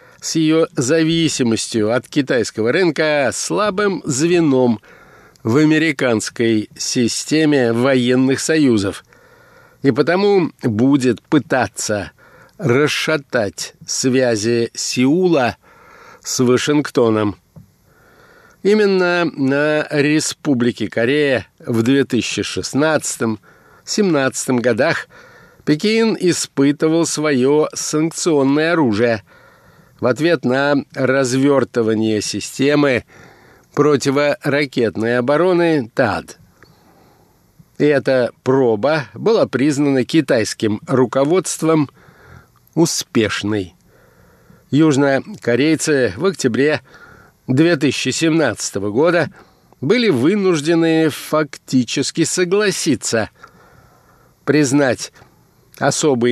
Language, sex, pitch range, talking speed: Russian, male, 125-160 Hz, 65 wpm